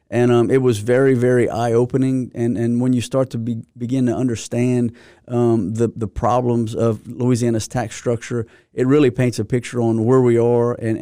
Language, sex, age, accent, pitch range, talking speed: English, male, 30-49, American, 115-125 Hz, 190 wpm